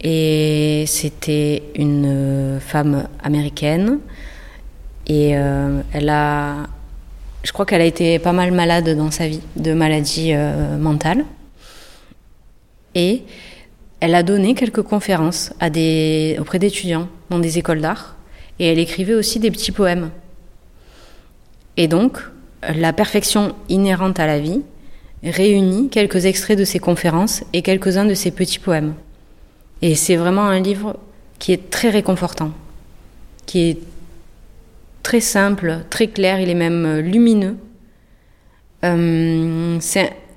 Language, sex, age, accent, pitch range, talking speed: French, female, 30-49, French, 155-190 Hz, 130 wpm